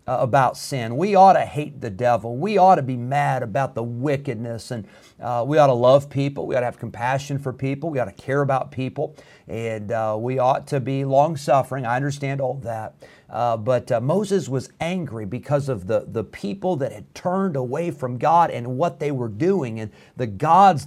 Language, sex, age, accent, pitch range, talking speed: English, male, 50-69, American, 120-145 Hz, 210 wpm